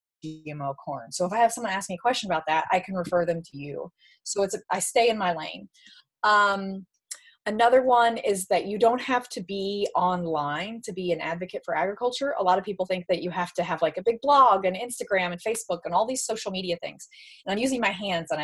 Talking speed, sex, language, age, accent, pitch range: 240 wpm, female, English, 20-39, American, 170-220 Hz